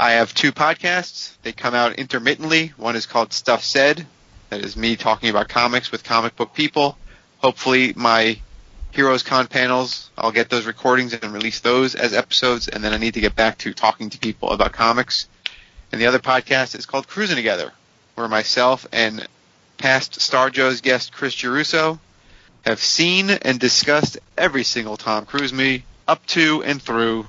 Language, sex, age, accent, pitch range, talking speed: English, male, 30-49, American, 110-135 Hz, 175 wpm